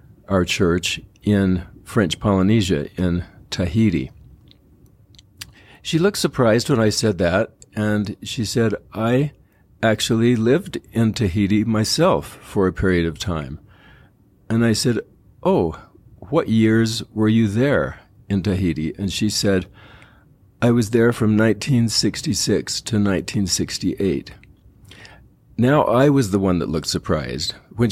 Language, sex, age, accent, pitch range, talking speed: English, male, 50-69, American, 95-115 Hz, 125 wpm